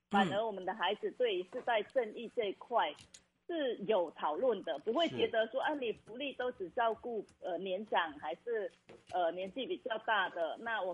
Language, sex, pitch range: Chinese, female, 180-270 Hz